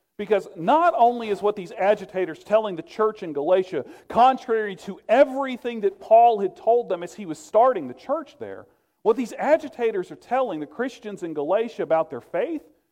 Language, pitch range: English, 165-235 Hz